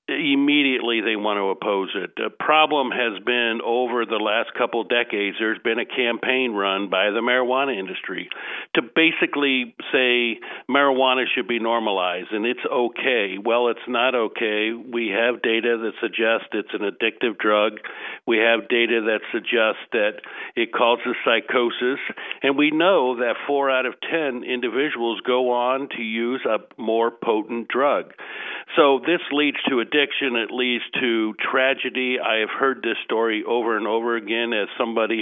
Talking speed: 160 wpm